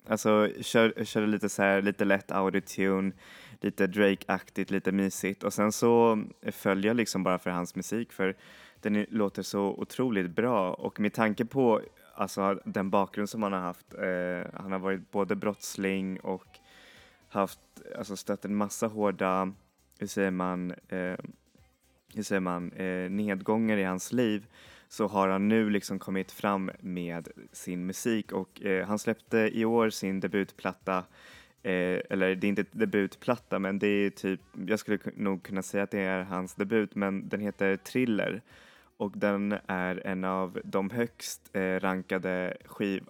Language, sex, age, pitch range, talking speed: Swedish, male, 20-39, 95-105 Hz, 165 wpm